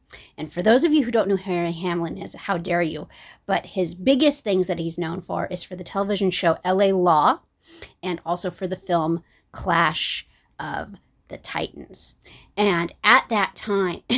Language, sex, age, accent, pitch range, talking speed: English, female, 40-59, American, 175-210 Hz, 180 wpm